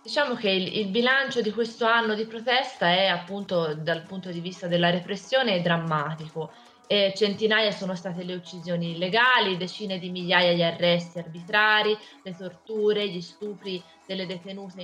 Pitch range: 175-220 Hz